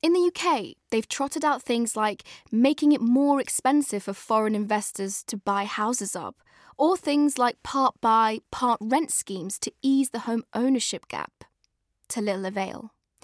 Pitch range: 210-295 Hz